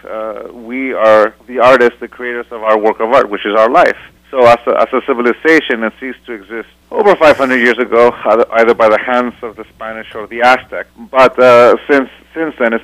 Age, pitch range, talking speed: 40-59, 95-120 Hz, 220 wpm